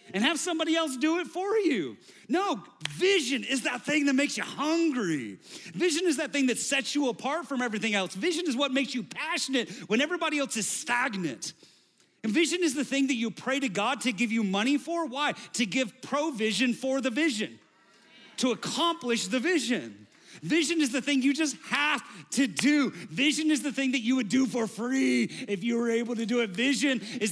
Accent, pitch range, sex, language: American, 170-265 Hz, male, English